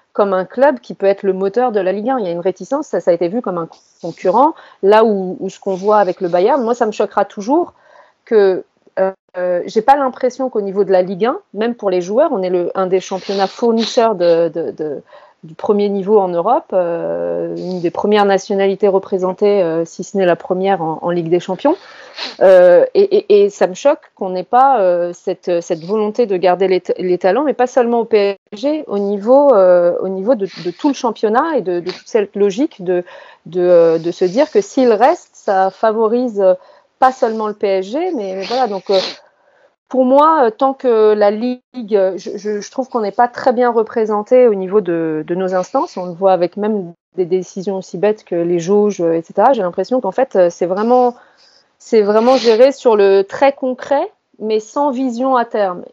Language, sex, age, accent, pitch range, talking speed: French, female, 30-49, French, 185-245 Hz, 205 wpm